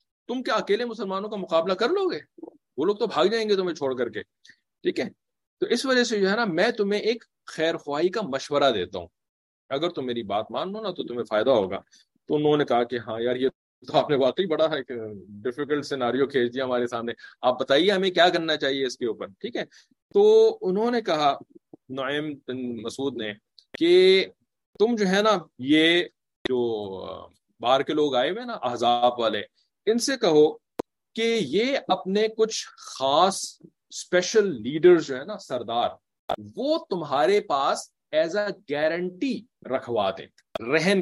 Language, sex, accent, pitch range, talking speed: English, male, Indian, 135-230 Hz, 150 wpm